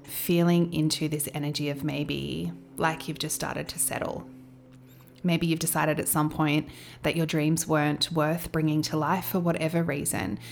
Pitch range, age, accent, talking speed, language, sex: 145-170 Hz, 20-39, Australian, 165 wpm, English, female